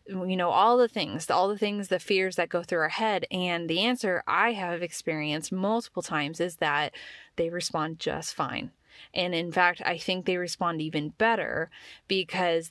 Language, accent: English, American